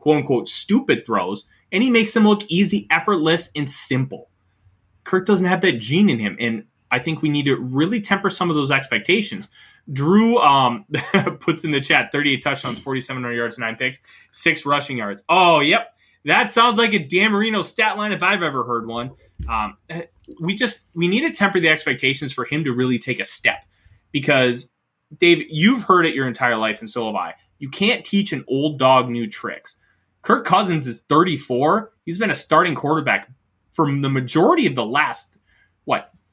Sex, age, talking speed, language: male, 20-39, 190 wpm, English